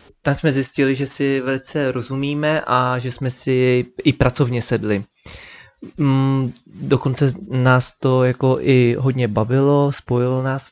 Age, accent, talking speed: 20-39, native, 130 wpm